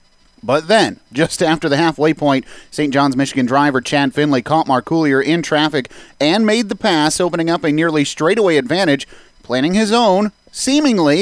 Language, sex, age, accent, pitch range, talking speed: English, male, 30-49, American, 135-170 Hz, 170 wpm